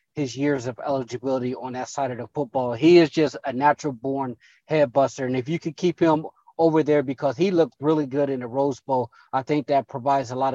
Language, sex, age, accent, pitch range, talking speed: English, male, 20-39, American, 135-155 Hz, 225 wpm